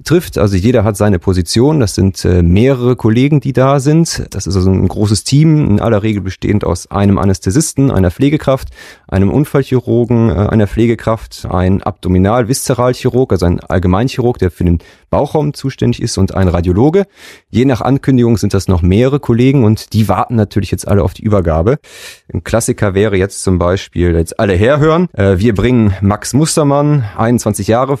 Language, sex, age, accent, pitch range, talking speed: German, male, 30-49, German, 100-135 Hz, 165 wpm